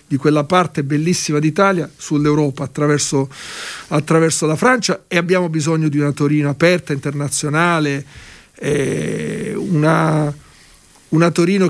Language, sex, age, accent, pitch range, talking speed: Italian, male, 50-69, native, 145-190 Hz, 115 wpm